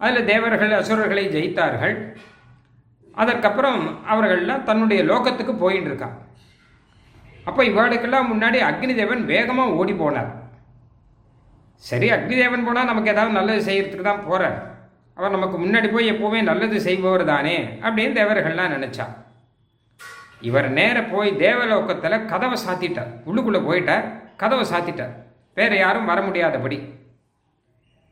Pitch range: 135-220 Hz